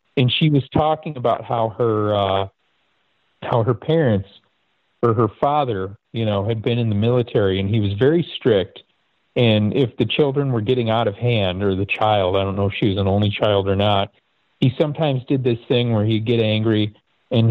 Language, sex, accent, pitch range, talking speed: English, male, American, 105-135 Hz, 200 wpm